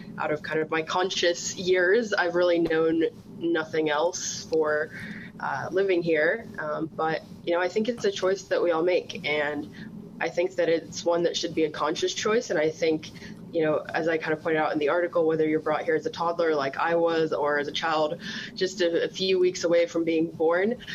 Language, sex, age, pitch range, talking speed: English, female, 20-39, 155-185 Hz, 225 wpm